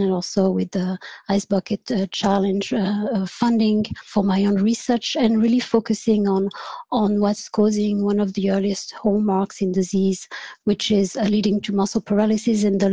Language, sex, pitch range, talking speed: English, female, 195-220 Hz, 170 wpm